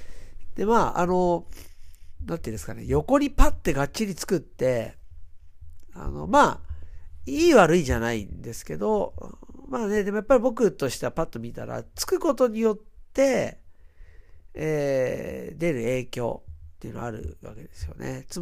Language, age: Japanese, 50-69